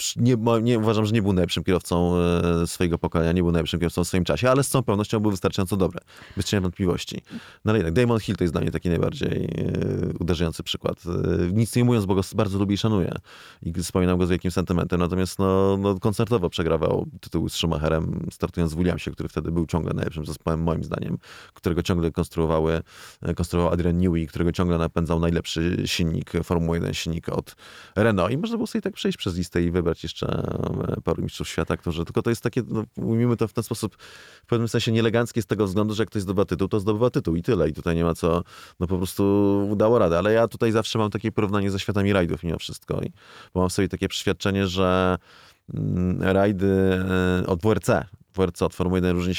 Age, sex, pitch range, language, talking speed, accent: 20-39, male, 85-100 Hz, Polish, 205 wpm, native